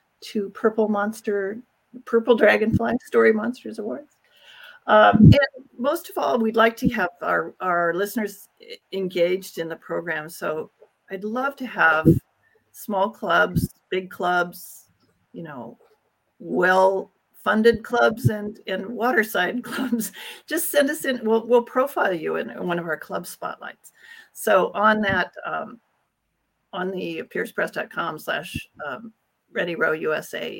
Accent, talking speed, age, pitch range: American, 135 wpm, 40-59, 180-245 Hz